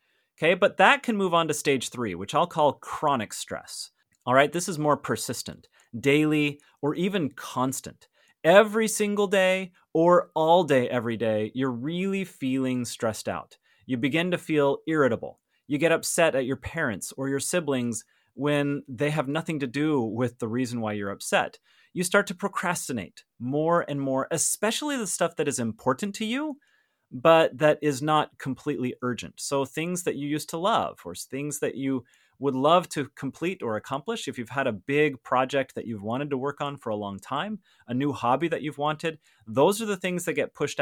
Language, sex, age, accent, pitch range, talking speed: English, male, 30-49, American, 125-170 Hz, 190 wpm